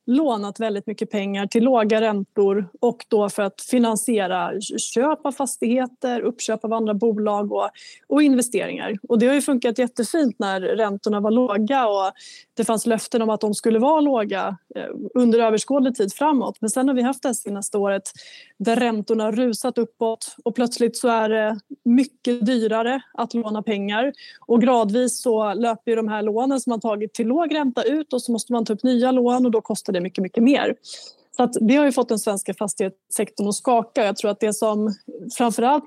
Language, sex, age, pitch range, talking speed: Swedish, female, 20-39, 210-250 Hz, 185 wpm